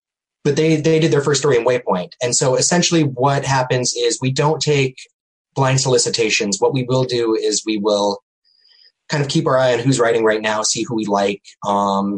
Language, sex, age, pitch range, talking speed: English, male, 20-39, 105-150 Hz, 205 wpm